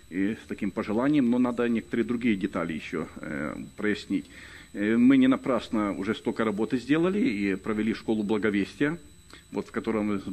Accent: native